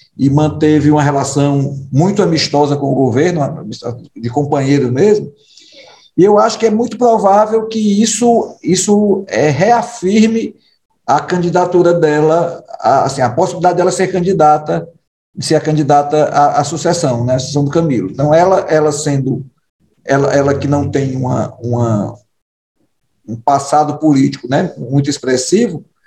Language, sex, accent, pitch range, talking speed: Portuguese, male, Brazilian, 145-190 Hz, 145 wpm